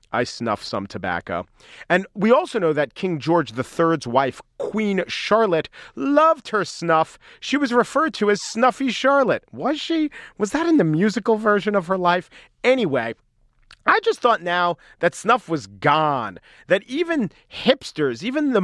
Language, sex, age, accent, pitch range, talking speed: English, male, 40-59, American, 145-205 Hz, 160 wpm